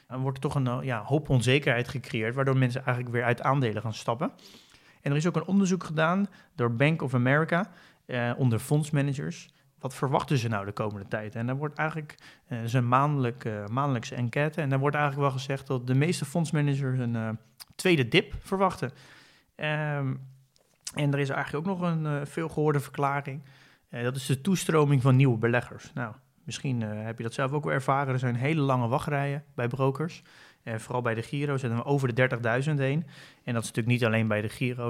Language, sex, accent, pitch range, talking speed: Dutch, male, Dutch, 120-145 Hz, 205 wpm